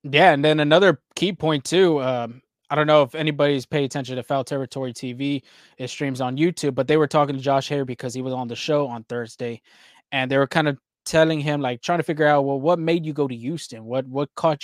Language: English